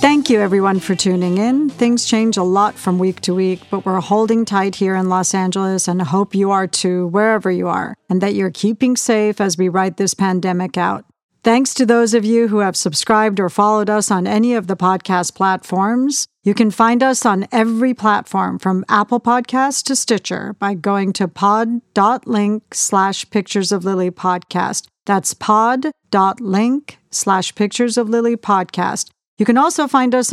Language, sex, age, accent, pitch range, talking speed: English, female, 40-59, American, 190-235 Hz, 170 wpm